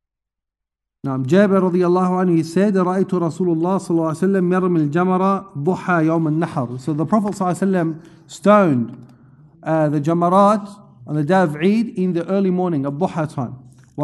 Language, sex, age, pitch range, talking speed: English, male, 50-69, 150-185 Hz, 115 wpm